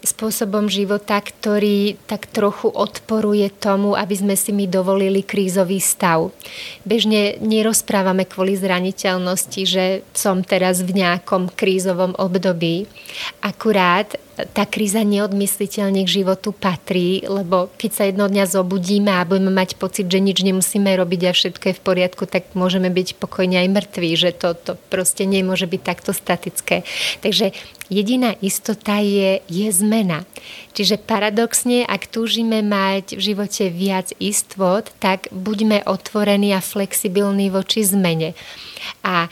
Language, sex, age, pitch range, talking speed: Slovak, female, 30-49, 185-210 Hz, 135 wpm